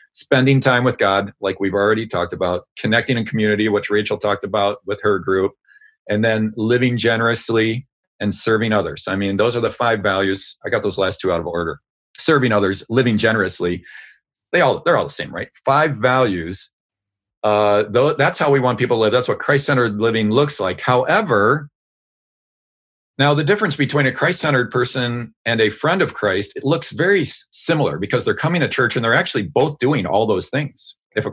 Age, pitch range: 40-59, 100-135 Hz